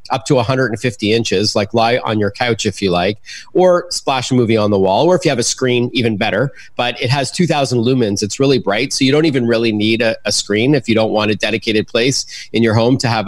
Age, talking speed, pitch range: 30-49, 255 wpm, 105-130 Hz